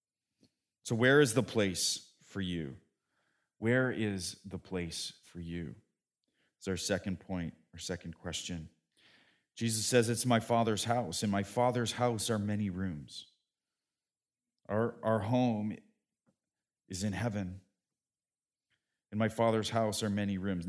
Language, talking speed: English, 135 wpm